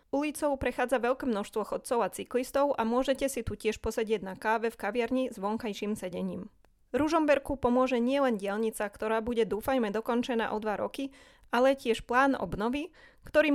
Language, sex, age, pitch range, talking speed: Slovak, female, 20-39, 215-275 Hz, 165 wpm